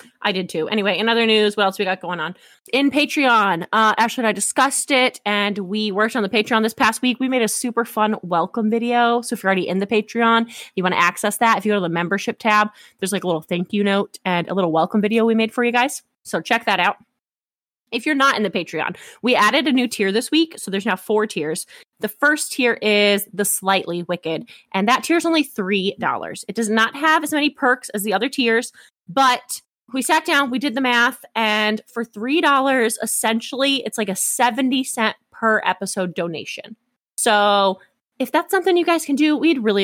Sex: female